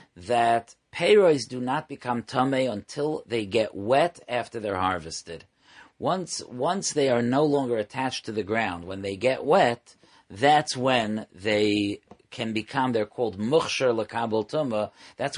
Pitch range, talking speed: 110-140 Hz, 145 wpm